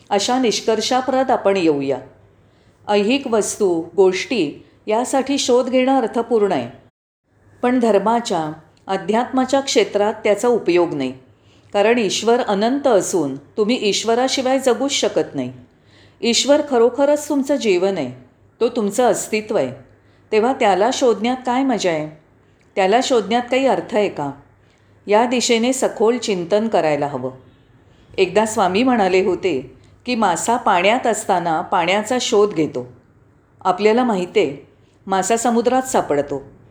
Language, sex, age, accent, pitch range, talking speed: Marathi, female, 40-59, native, 155-245 Hz, 120 wpm